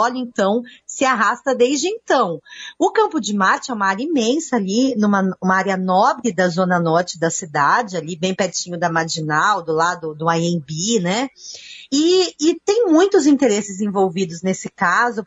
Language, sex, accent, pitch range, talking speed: Portuguese, female, Brazilian, 190-280 Hz, 165 wpm